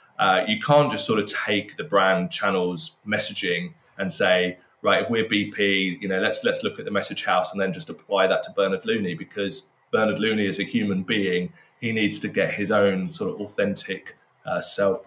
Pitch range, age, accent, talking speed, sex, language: 95-120 Hz, 20-39, British, 205 wpm, male, English